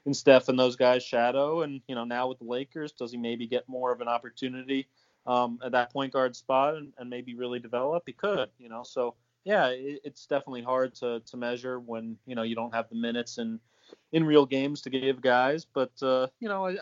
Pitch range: 115-130 Hz